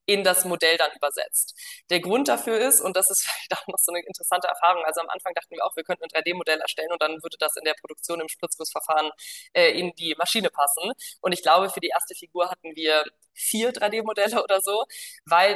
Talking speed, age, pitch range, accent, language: 215 wpm, 20-39, 165-205 Hz, German, English